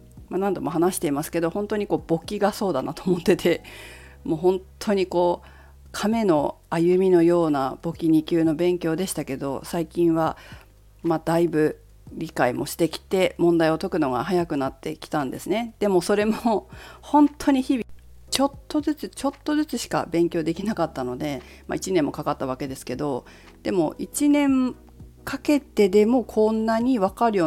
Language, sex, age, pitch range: Japanese, female, 40-59, 160-240 Hz